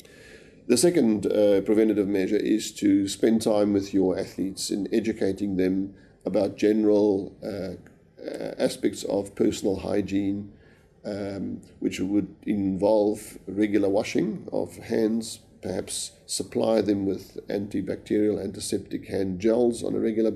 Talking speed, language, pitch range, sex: 120 wpm, English, 95-110 Hz, male